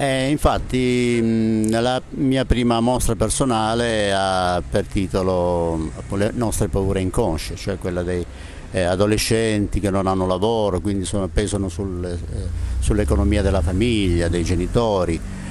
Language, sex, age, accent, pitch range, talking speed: Italian, male, 50-69, native, 90-110 Hz, 125 wpm